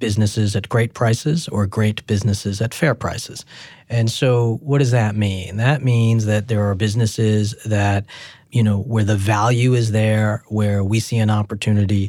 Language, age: English, 40-59